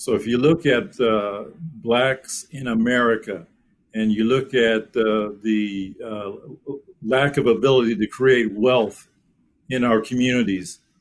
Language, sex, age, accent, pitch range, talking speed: English, male, 50-69, American, 110-130 Hz, 135 wpm